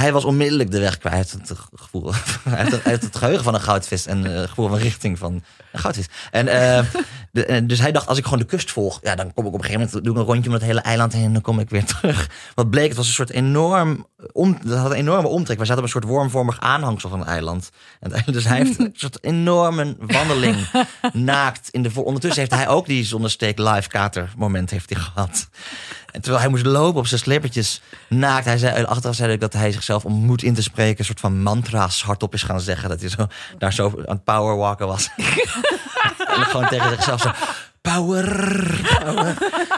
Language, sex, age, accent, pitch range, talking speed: Dutch, male, 30-49, Dutch, 100-130 Hz, 230 wpm